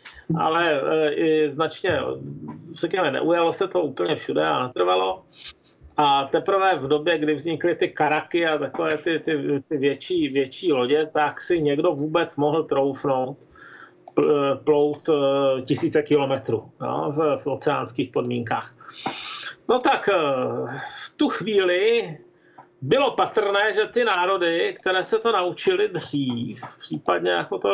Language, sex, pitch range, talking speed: Czech, male, 145-195 Hz, 125 wpm